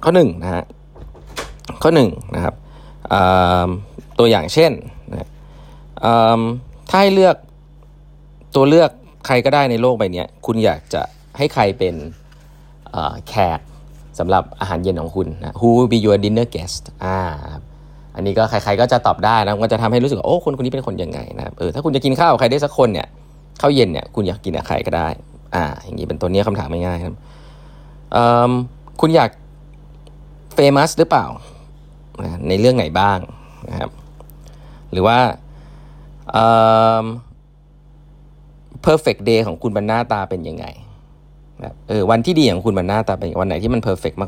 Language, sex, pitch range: Thai, male, 105-150 Hz